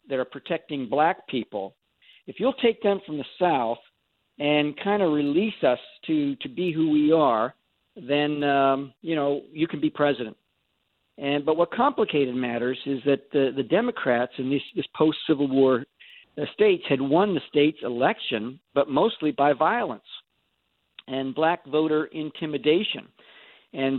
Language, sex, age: English, male, 50-69